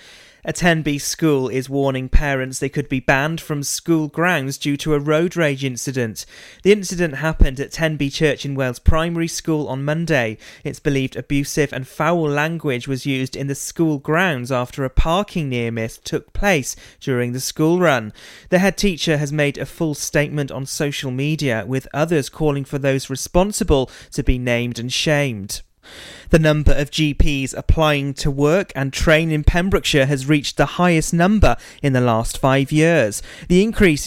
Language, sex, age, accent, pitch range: Japanese, male, 30-49, British, 130-160 Hz